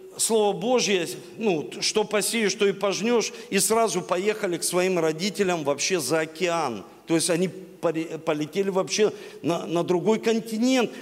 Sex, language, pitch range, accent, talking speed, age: male, Russian, 195-255 Hz, native, 140 wpm, 50-69